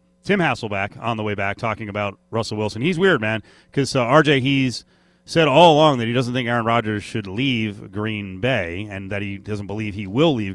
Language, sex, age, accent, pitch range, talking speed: English, male, 30-49, American, 105-130 Hz, 215 wpm